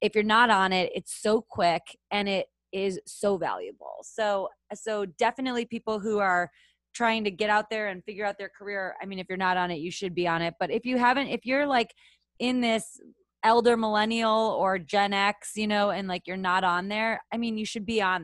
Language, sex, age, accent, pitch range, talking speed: English, female, 20-39, American, 190-235 Hz, 225 wpm